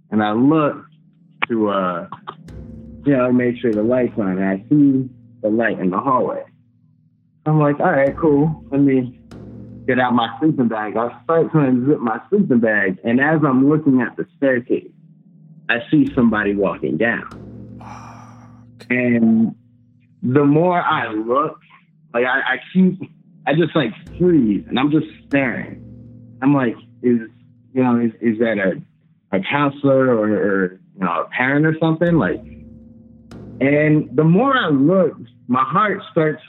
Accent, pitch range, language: American, 120-160 Hz, English